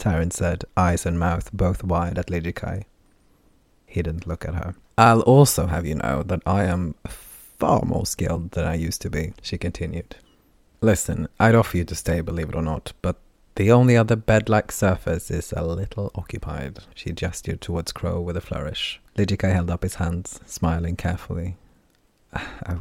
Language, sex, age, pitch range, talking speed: English, male, 30-49, 85-100 Hz, 175 wpm